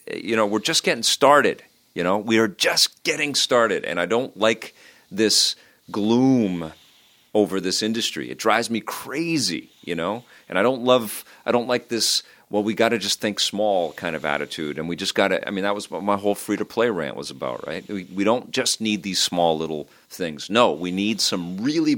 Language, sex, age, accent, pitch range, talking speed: English, male, 40-59, American, 85-110 Hz, 210 wpm